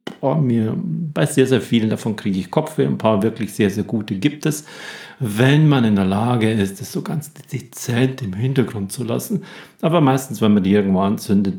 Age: 50-69